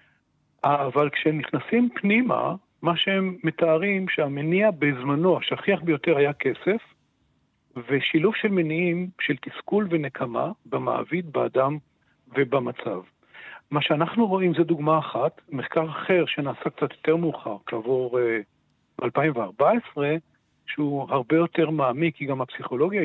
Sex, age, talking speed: male, 60-79, 110 wpm